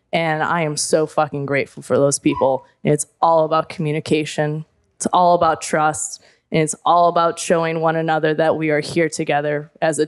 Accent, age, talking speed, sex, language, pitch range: American, 20-39, 185 wpm, female, English, 160-185 Hz